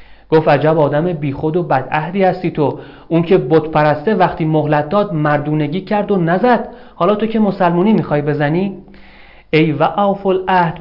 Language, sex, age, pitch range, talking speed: Persian, male, 40-59, 140-175 Hz, 160 wpm